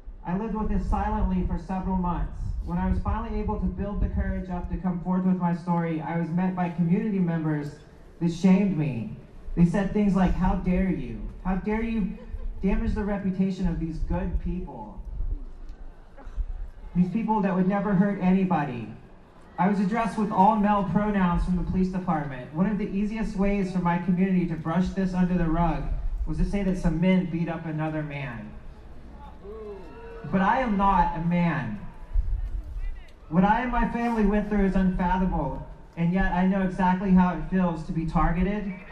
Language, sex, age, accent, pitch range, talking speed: English, male, 30-49, American, 155-190 Hz, 180 wpm